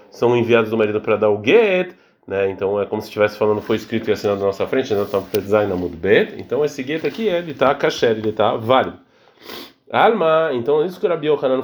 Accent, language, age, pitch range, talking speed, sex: Brazilian, Portuguese, 30-49, 110-165 Hz, 210 wpm, male